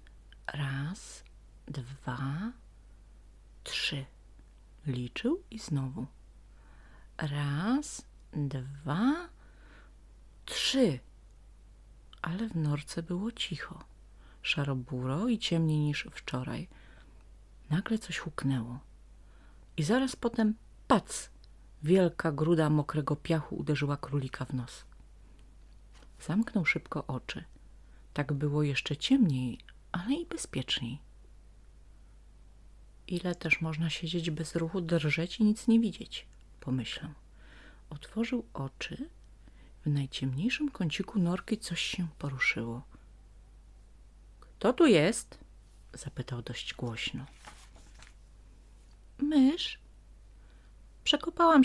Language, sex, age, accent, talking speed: Polish, female, 40-59, native, 85 wpm